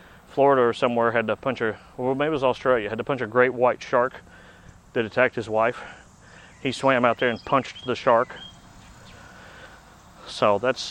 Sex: male